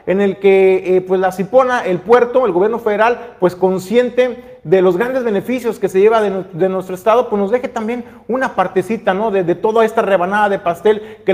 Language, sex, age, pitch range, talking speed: Spanish, male, 40-59, 185-235 Hz, 215 wpm